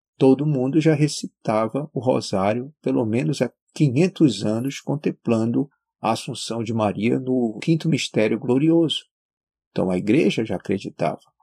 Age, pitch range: 50-69, 105-155 Hz